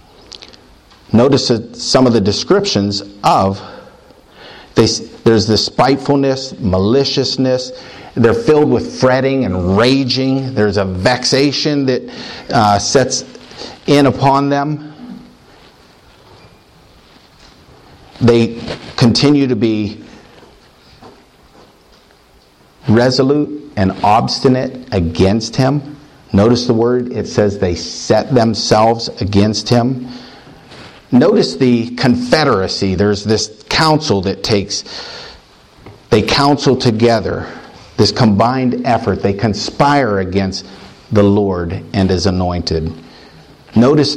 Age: 50-69